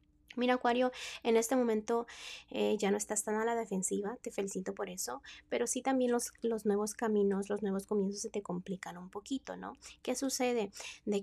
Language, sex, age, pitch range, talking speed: Spanish, female, 20-39, 195-230 Hz, 190 wpm